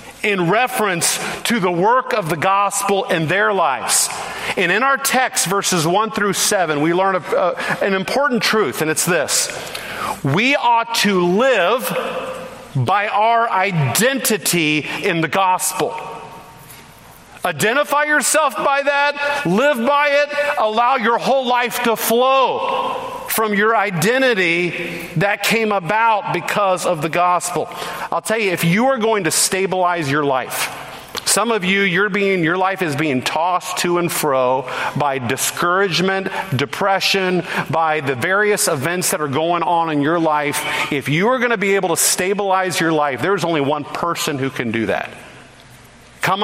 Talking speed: 150 wpm